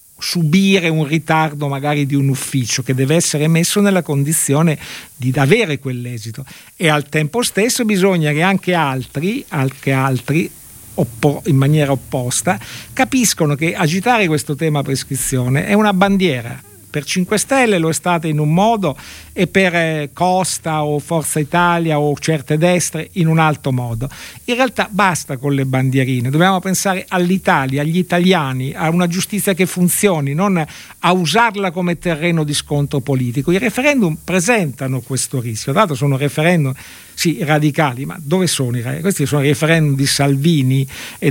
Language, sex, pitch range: Italian, male, 140-180 Hz